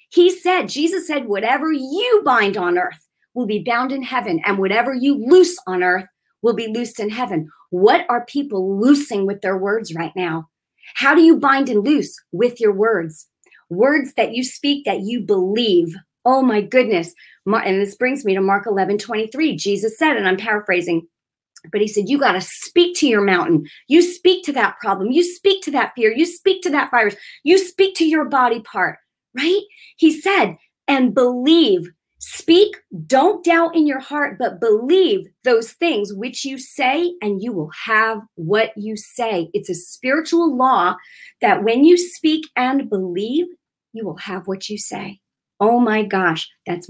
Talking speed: 185 wpm